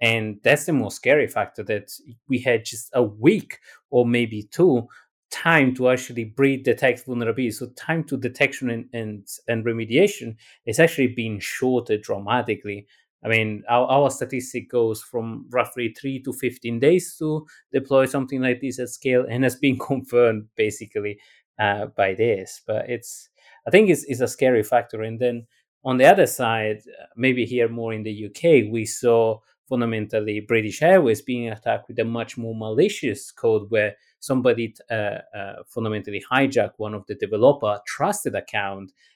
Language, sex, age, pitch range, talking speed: English, male, 30-49, 110-130 Hz, 165 wpm